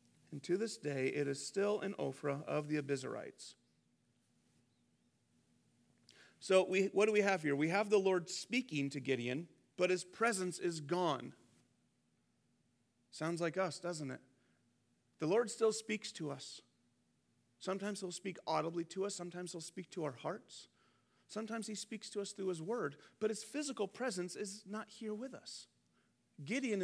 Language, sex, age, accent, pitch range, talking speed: English, male, 40-59, American, 150-215 Hz, 160 wpm